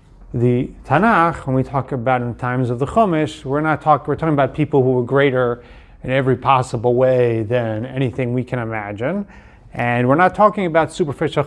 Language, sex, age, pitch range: English, male, 30-49, 125-155 Hz